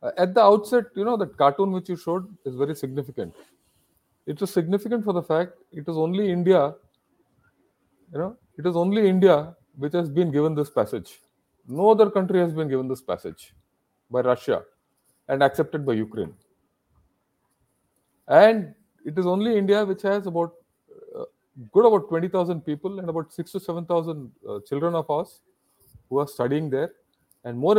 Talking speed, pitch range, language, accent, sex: 165 wpm, 145-195 Hz, English, Indian, male